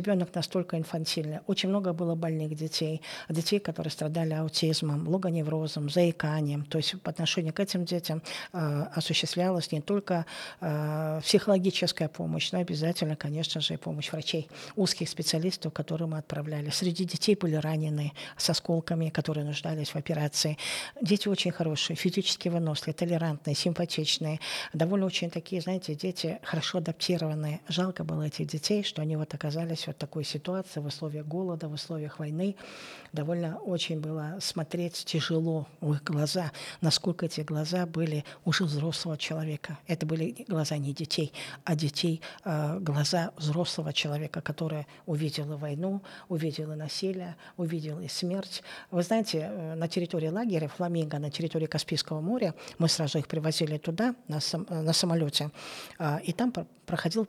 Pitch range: 155-175 Hz